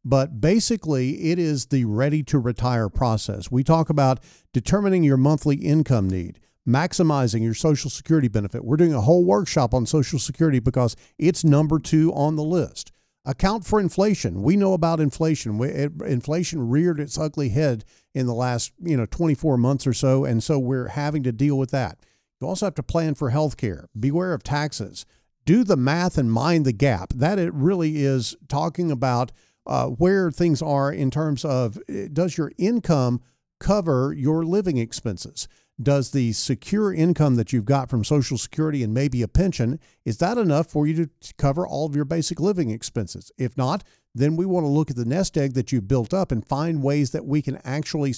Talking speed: 190 wpm